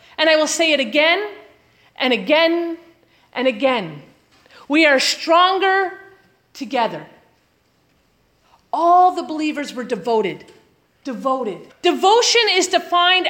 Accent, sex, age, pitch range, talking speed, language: American, female, 30-49, 290-385 Hz, 105 wpm, English